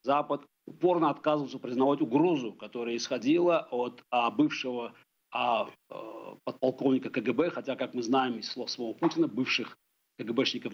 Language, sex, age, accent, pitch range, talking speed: Ukrainian, male, 50-69, native, 130-185 Hz, 110 wpm